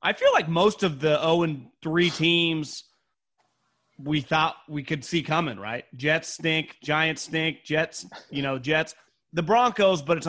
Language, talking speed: English, 165 wpm